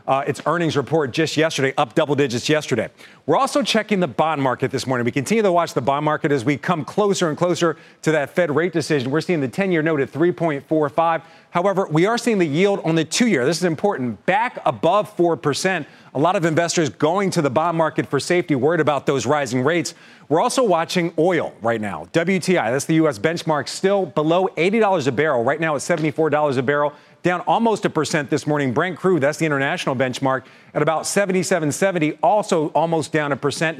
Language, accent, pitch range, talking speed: English, American, 145-180 Hz, 205 wpm